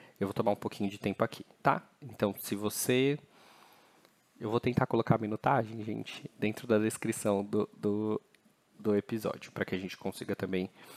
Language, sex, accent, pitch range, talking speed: Portuguese, male, Brazilian, 105-135 Hz, 175 wpm